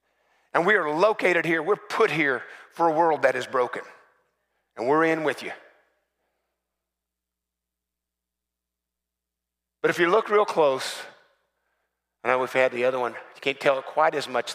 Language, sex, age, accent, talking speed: English, male, 50-69, American, 155 wpm